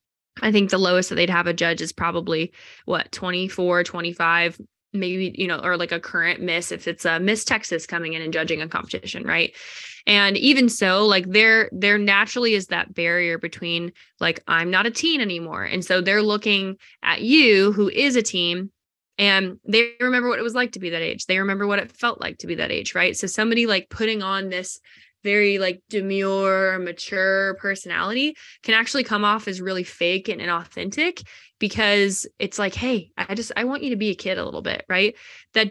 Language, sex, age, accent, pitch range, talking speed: English, female, 20-39, American, 180-215 Hz, 205 wpm